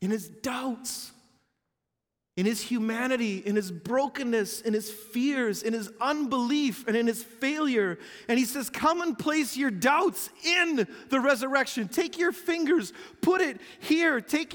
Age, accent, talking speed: 40-59, American, 155 wpm